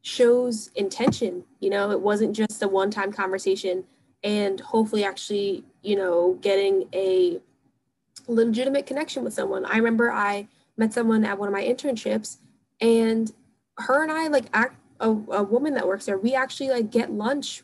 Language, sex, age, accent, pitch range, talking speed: English, female, 10-29, American, 200-240 Hz, 165 wpm